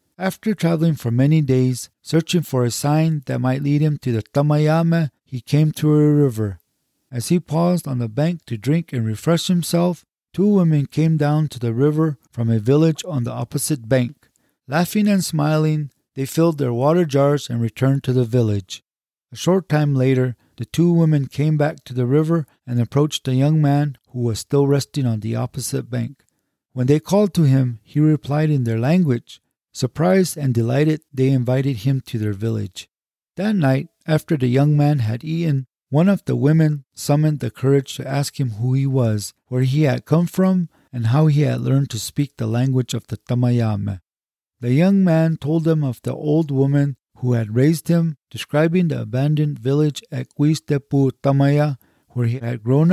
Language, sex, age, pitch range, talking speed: English, male, 40-59, 125-155 Hz, 185 wpm